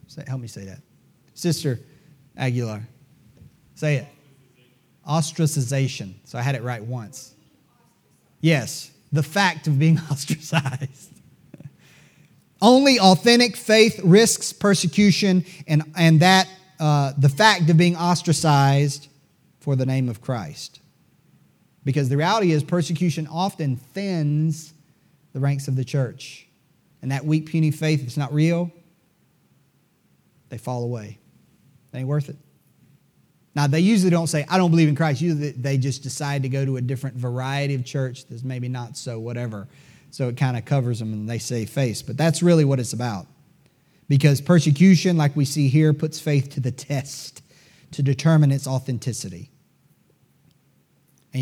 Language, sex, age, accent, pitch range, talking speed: English, male, 30-49, American, 130-160 Hz, 150 wpm